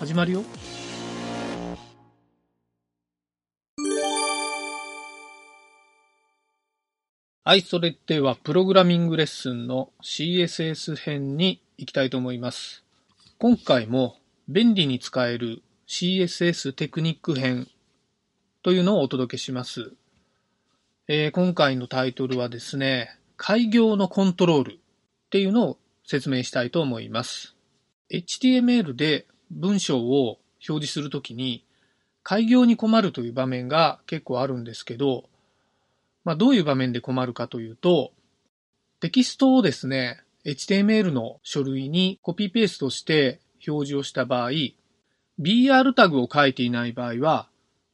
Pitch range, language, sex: 125-180 Hz, Japanese, male